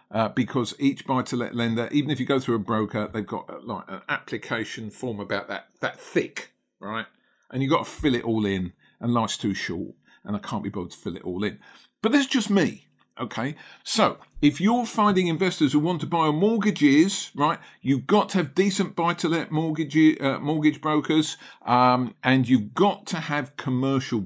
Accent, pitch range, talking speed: British, 125-195 Hz, 200 wpm